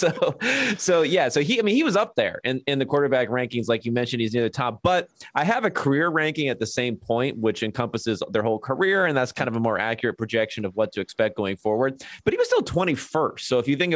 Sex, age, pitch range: male, 30-49, 110-135 Hz